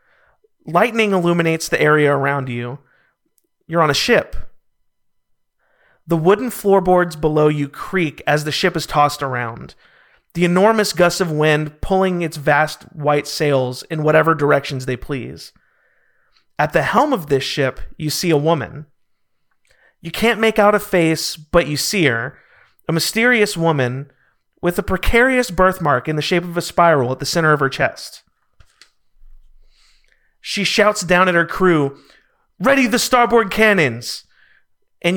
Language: English